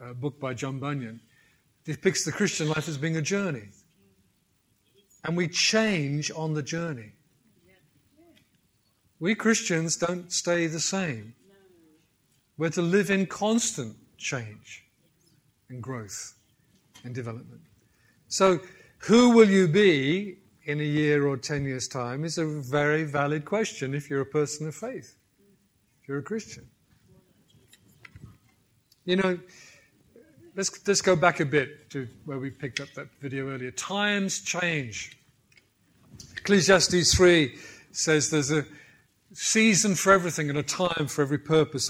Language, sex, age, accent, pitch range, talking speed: English, male, 50-69, British, 135-180 Hz, 135 wpm